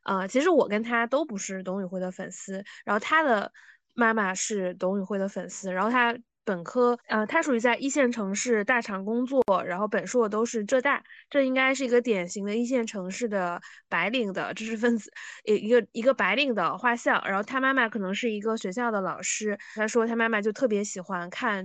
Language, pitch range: Chinese, 200-255 Hz